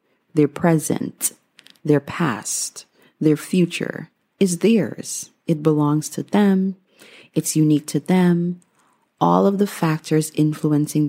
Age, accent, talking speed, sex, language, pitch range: 30-49, American, 115 wpm, female, English, 145-185 Hz